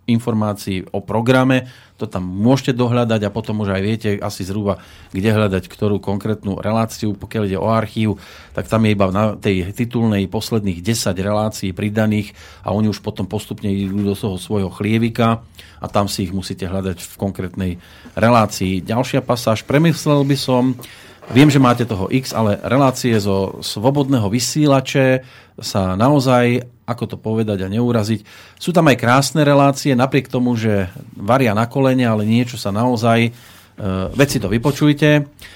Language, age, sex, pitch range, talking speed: Slovak, 40-59, male, 100-120 Hz, 155 wpm